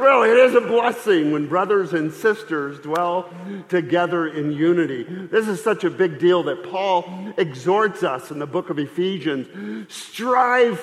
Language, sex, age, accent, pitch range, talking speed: English, male, 50-69, American, 150-195 Hz, 160 wpm